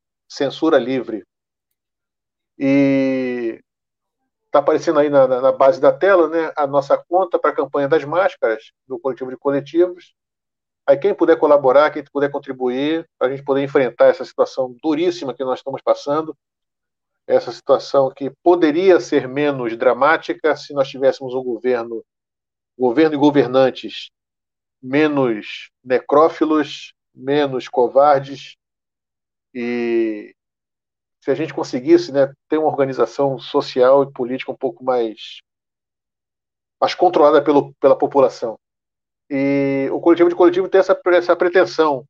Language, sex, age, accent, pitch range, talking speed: Portuguese, male, 50-69, Brazilian, 130-170 Hz, 130 wpm